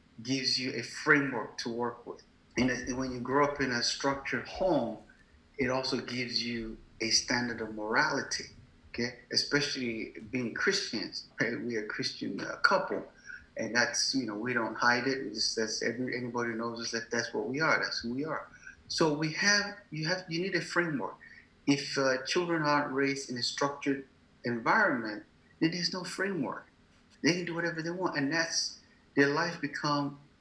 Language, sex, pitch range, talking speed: English, male, 125-165 Hz, 175 wpm